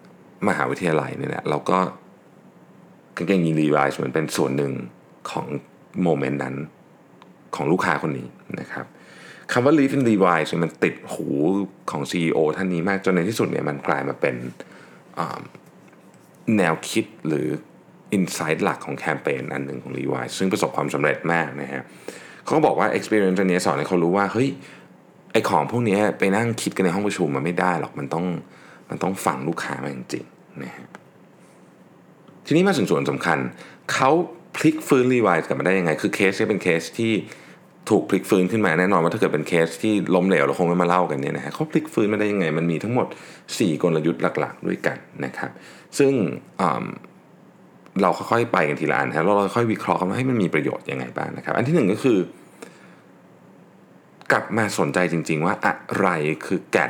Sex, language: male, Thai